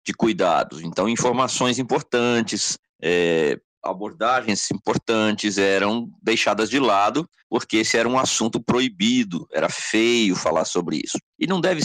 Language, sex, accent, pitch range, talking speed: Portuguese, male, Brazilian, 100-135 Hz, 130 wpm